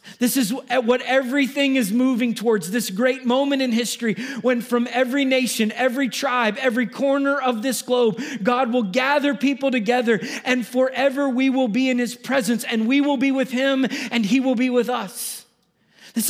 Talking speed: 180 wpm